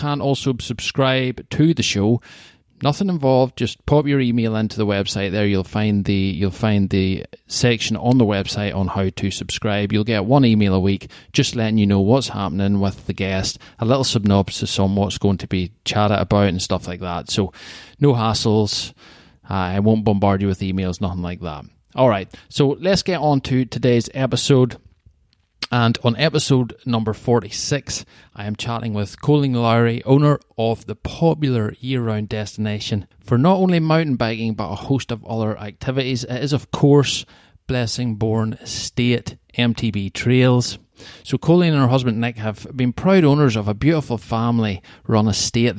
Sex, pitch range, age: male, 100-130 Hz, 30-49